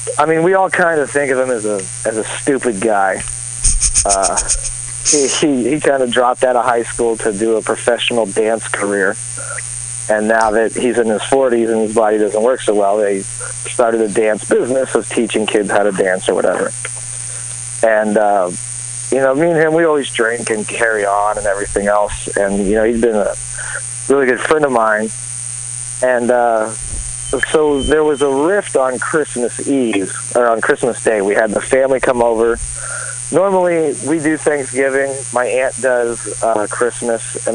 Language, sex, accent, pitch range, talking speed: English, male, American, 110-125 Hz, 185 wpm